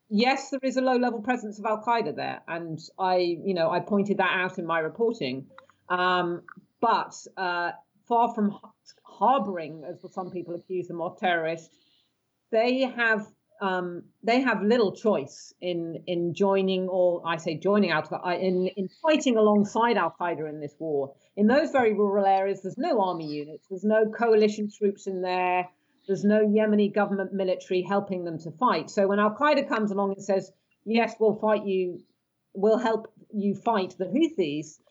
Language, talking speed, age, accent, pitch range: English, 170 wpm, 40-59, British, 175-215 Hz